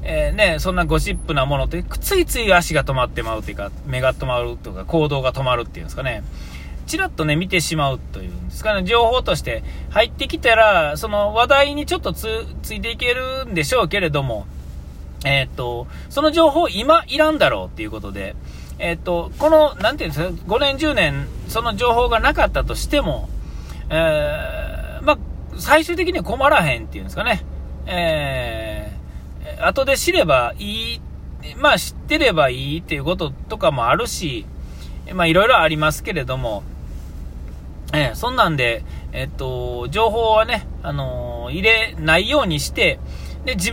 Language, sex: Japanese, male